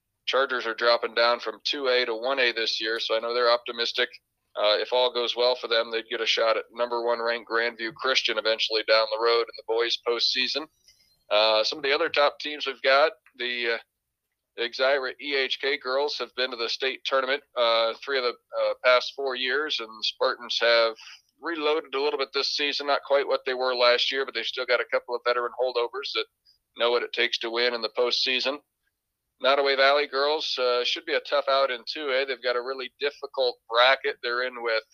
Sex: male